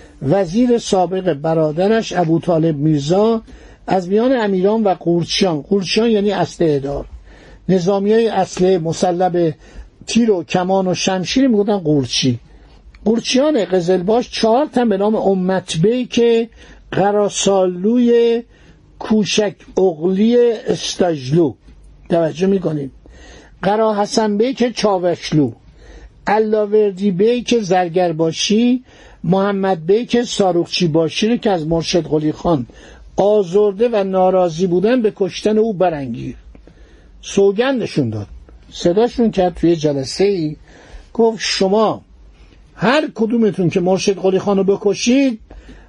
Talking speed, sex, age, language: 105 wpm, male, 60-79, Persian